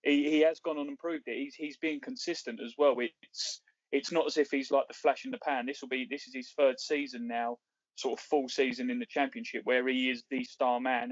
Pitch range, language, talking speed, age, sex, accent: 125-150 Hz, English, 260 wpm, 20-39, male, British